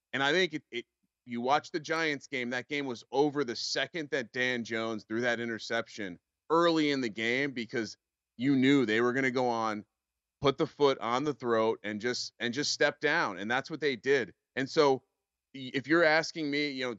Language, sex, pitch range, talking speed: English, male, 105-130 Hz, 210 wpm